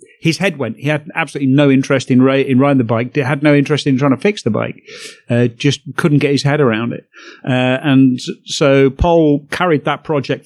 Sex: male